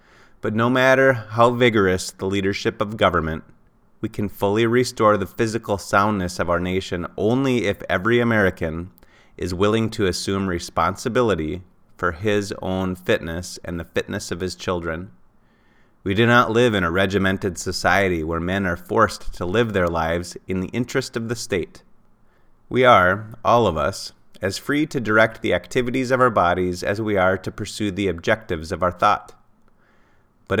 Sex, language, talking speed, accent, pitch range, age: male, English, 165 wpm, American, 90-110 Hz, 30-49